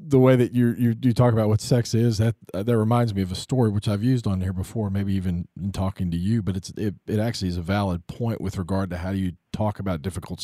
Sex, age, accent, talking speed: male, 40-59, American, 270 wpm